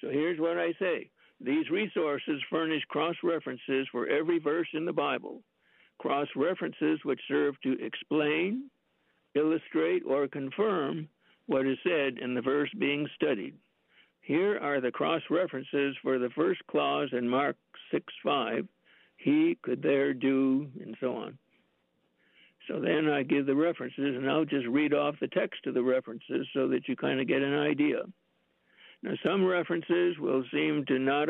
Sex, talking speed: male, 155 wpm